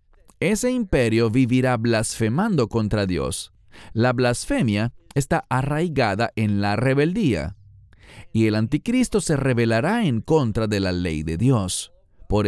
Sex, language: male, English